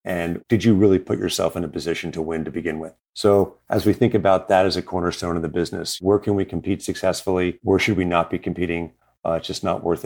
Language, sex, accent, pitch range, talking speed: English, male, American, 90-100 Hz, 250 wpm